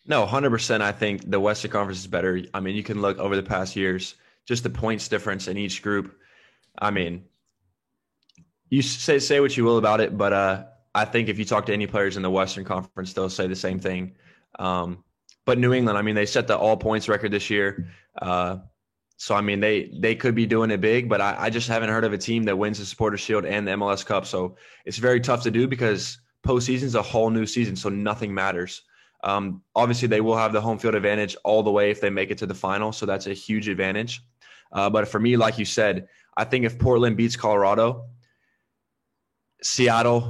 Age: 20-39